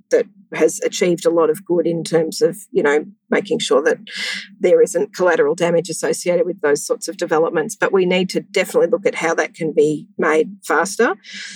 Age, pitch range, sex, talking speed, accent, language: 40-59, 170-205 Hz, female, 195 wpm, Australian, English